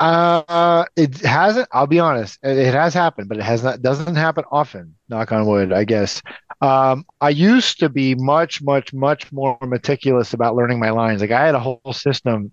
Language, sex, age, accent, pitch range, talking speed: English, male, 30-49, American, 115-145 Hz, 195 wpm